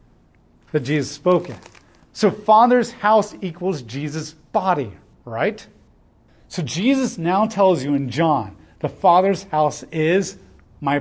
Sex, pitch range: male, 140-190 Hz